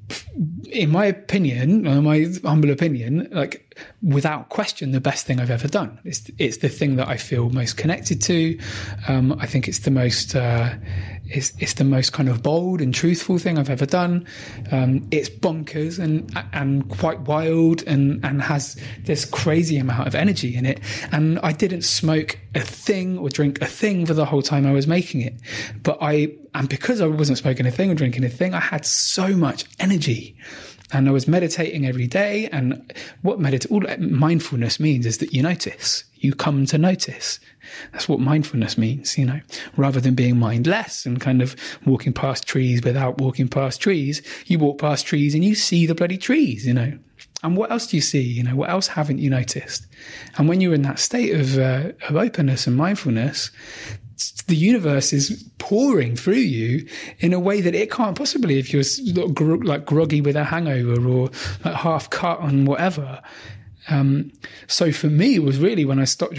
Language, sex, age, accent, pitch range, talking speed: English, male, 20-39, British, 130-165 Hz, 190 wpm